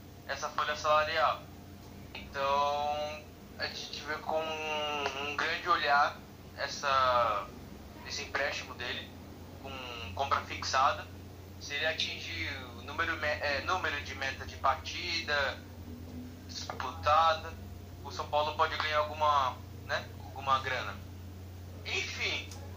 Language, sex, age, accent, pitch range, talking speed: Portuguese, male, 20-39, Brazilian, 95-150 Hz, 105 wpm